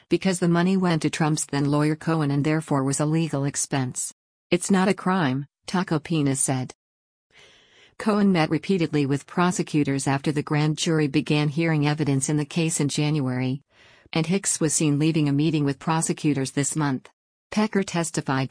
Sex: female